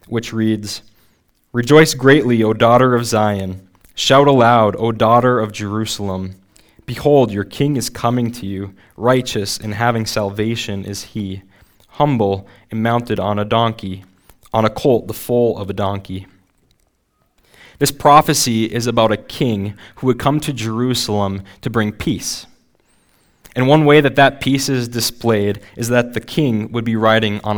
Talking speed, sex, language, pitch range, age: 155 wpm, male, English, 100-125 Hz, 20-39